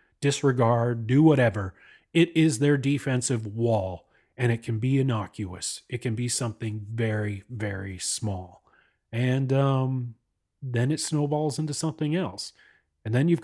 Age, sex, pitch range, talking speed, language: 30-49, male, 115-155 Hz, 140 wpm, English